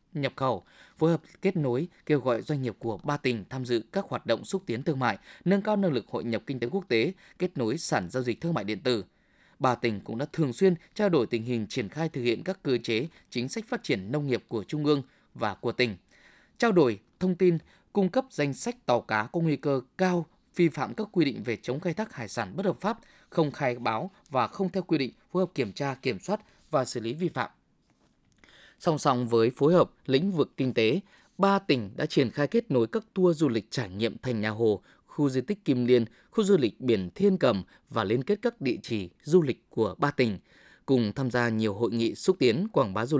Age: 20-39